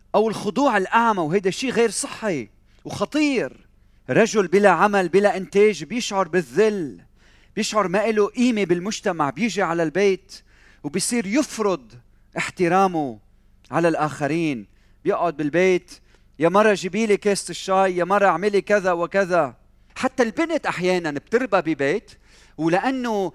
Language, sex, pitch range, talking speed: Arabic, male, 150-210 Hz, 120 wpm